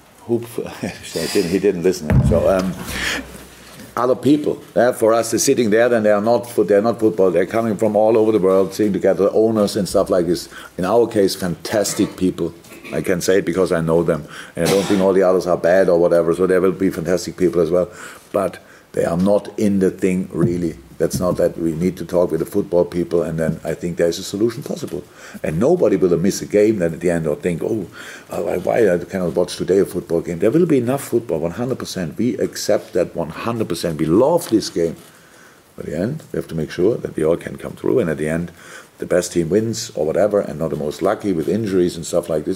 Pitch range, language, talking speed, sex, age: 85-105 Hz, English, 245 wpm, male, 50-69